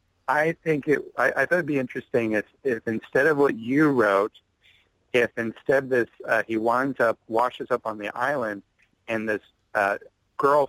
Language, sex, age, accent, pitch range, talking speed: English, male, 40-59, American, 100-120 Hz, 175 wpm